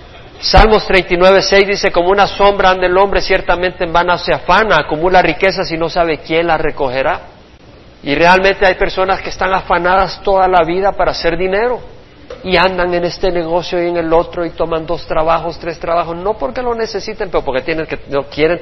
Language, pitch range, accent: Spanish, 140-185 Hz, Mexican